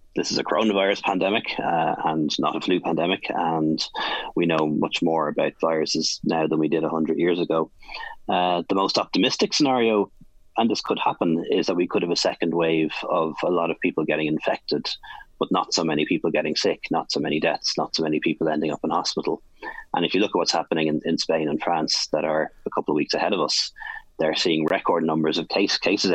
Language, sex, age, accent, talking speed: English, male, 30-49, Irish, 220 wpm